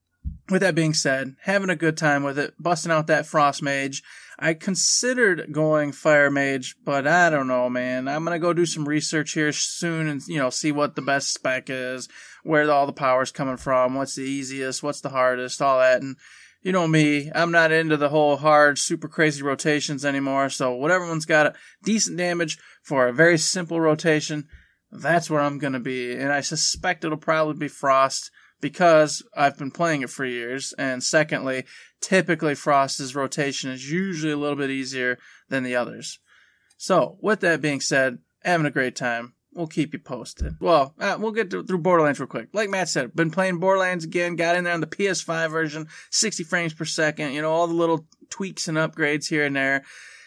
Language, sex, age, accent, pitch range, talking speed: English, male, 20-39, American, 135-165 Hz, 200 wpm